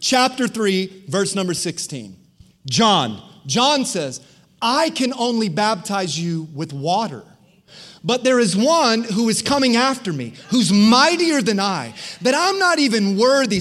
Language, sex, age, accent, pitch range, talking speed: English, male, 30-49, American, 185-255 Hz, 145 wpm